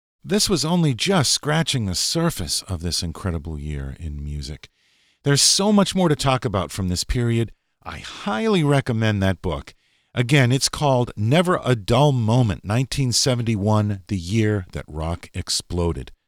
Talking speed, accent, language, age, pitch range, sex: 150 wpm, American, English, 50-69, 85-140 Hz, male